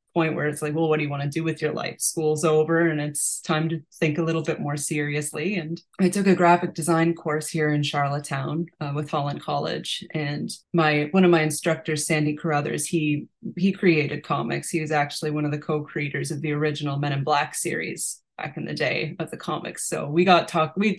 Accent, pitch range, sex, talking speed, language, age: American, 150-170 Hz, female, 225 wpm, English, 20-39